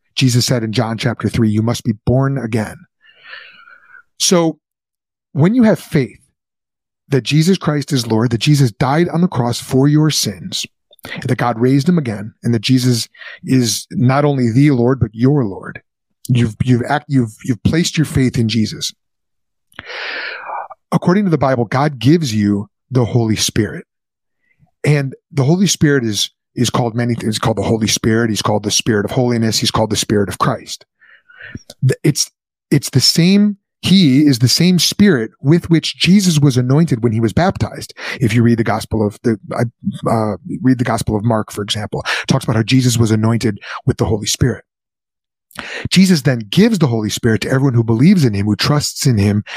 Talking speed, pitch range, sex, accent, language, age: 185 wpm, 115-150 Hz, male, American, English, 30-49